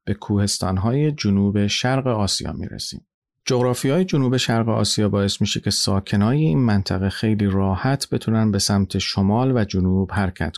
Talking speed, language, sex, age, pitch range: 155 wpm, Persian, male, 40-59, 95-115 Hz